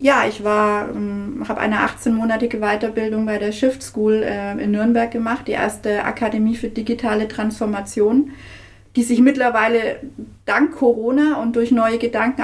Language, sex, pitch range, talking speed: German, female, 220-250 Hz, 150 wpm